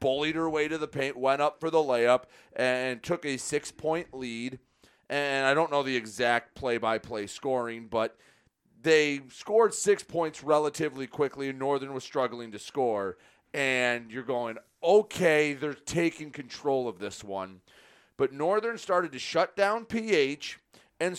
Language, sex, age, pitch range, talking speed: English, male, 30-49, 120-155 Hz, 155 wpm